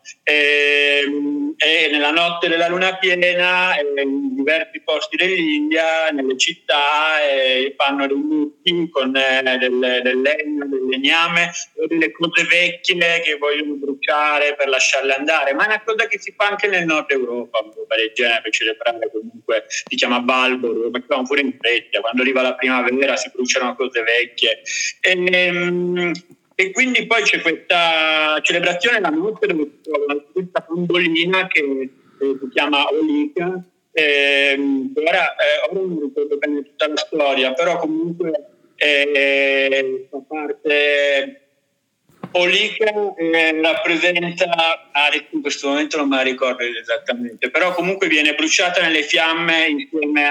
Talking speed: 145 wpm